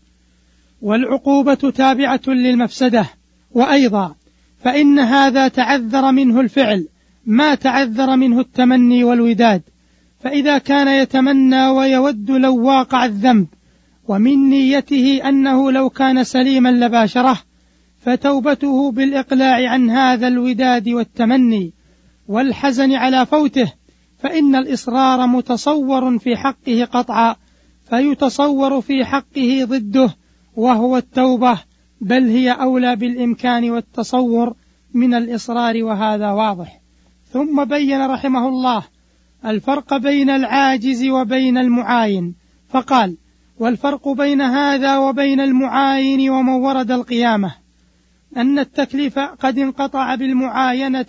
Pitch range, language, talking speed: 235-270 Hz, Arabic, 95 wpm